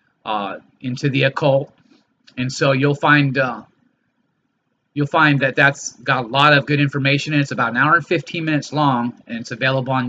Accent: American